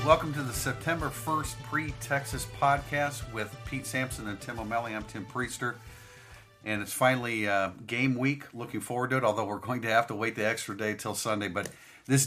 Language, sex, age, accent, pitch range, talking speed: English, male, 50-69, American, 95-120 Hz, 195 wpm